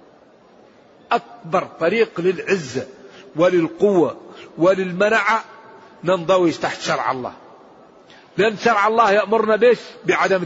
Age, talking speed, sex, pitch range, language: 50-69, 85 wpm, male, 175-205 Hz, Arabic